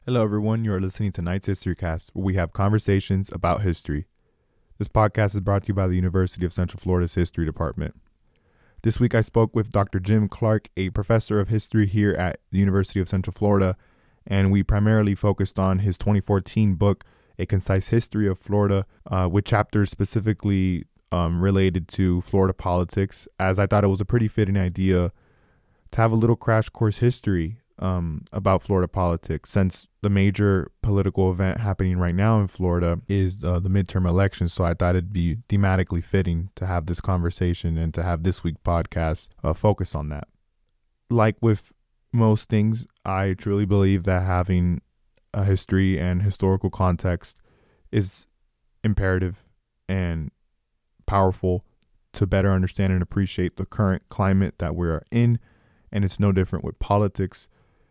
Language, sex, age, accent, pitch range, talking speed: English, male, 20-39, American, 90-105 Hz, 165 wpm